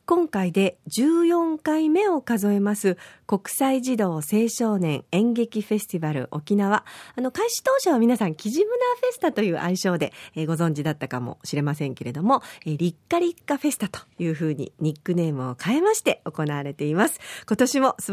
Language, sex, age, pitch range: Japanese, female, 40-59, 170-270 Hz